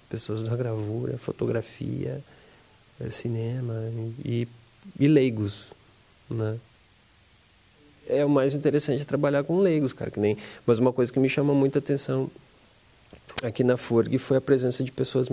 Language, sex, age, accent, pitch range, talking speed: Portuguese, male, 40-59, Brazilian, 110-135 Hz, 140 wpm